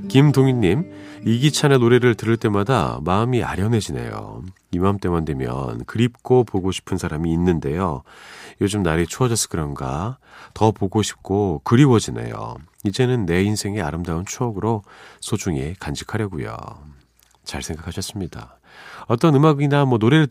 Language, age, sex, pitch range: Korean, 40-59, male, 85-130 Hz